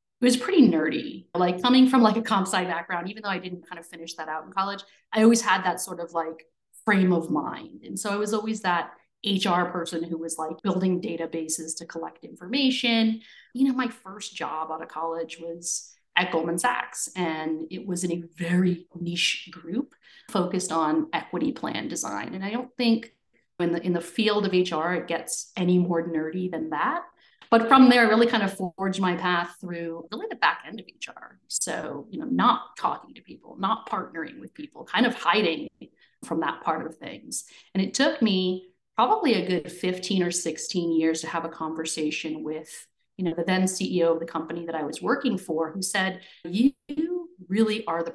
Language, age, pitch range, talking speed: English, 30-49, 165-215 Hz, 200 wpm